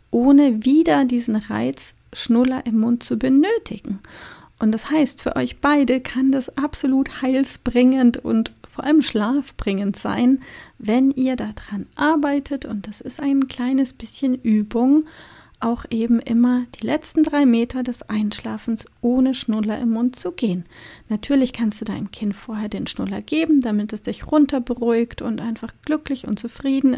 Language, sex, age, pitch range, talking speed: German, female, 30-49, 220-270 Hz, 150 wpm